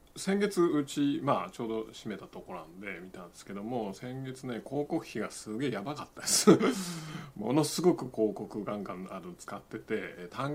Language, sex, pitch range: Japanese, male, 110-145 Hz